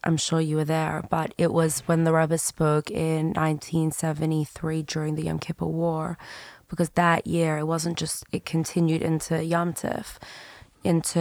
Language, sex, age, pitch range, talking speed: English, female, 20-39, 160-175 Hz, 165 wpm